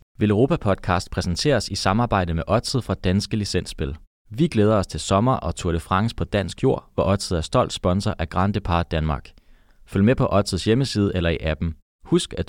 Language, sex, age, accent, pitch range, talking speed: Danish, male, 30-49, native, 95-135 Hz, 195 wpm